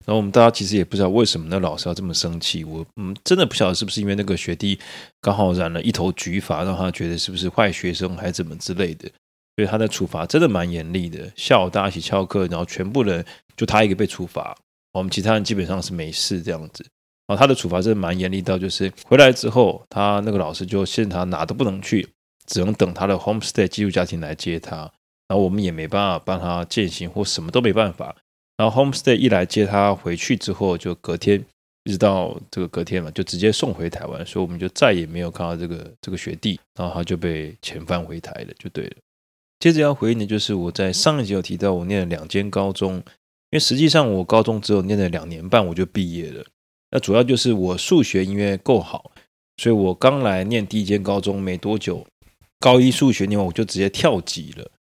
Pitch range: 90-105 Hz